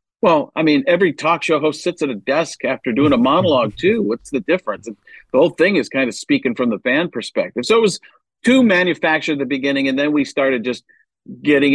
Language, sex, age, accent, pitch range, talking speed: English, male, 50-69, American, 130-175 Hz, 230 wpm